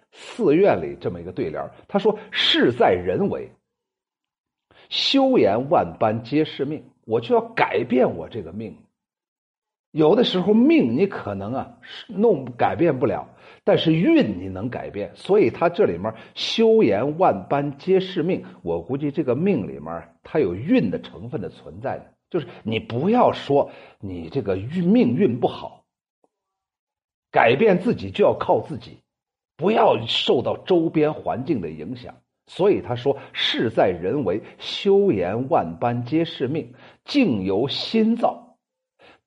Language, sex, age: Chinese, male, 50-69